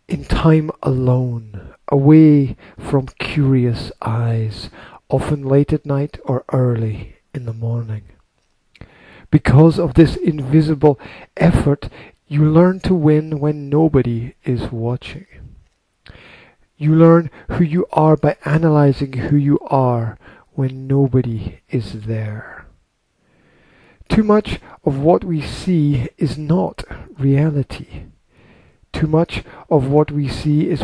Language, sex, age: English, male, 50-69